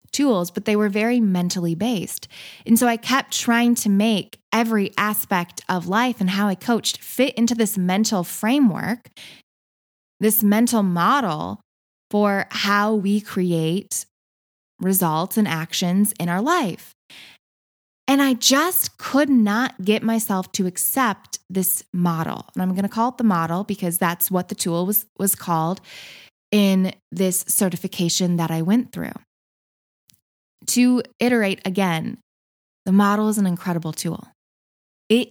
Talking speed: 145 wpm